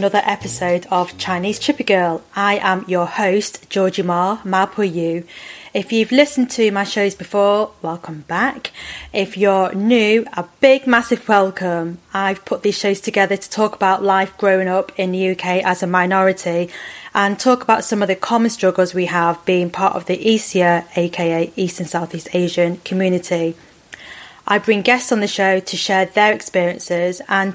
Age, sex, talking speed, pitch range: 30-49, female, 170 wpm, 180-210 Hz